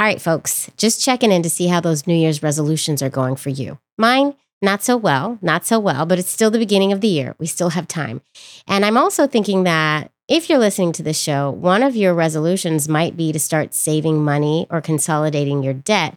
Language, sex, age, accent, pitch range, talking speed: English, female, 30-49, American, 155-200 Hz, 225 wpm